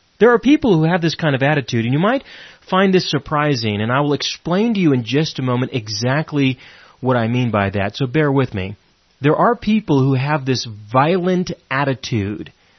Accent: American